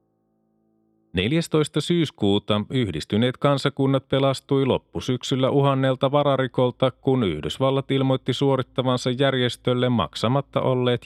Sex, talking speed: male, 80 wpm